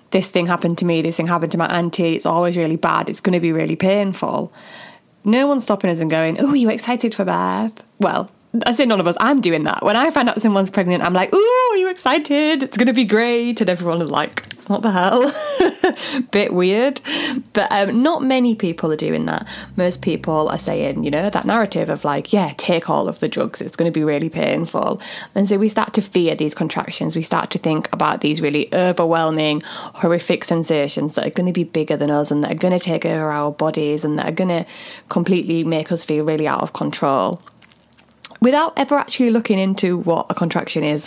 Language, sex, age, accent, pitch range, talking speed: English, female, 20-39, British, 165-225 Hz, 225 wpm